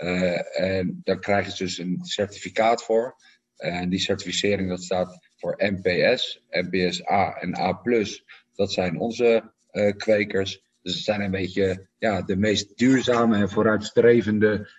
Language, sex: Dutch, male